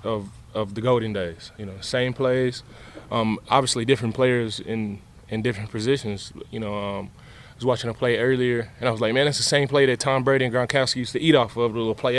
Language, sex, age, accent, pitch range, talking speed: English, male, 20-39, American, 110-130 Hz, 235 wpm